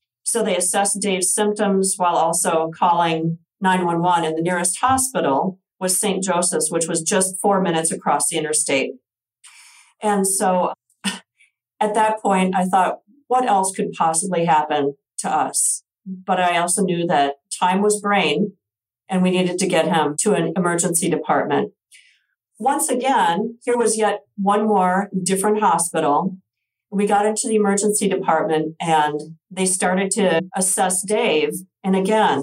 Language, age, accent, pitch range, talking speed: English, 50-69, American, 165-205 Hz, 145 wpm